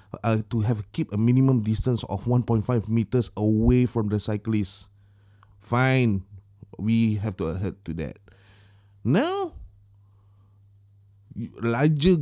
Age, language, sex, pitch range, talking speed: 20-39, Malay, male, 100-115 Hz, 115 wpm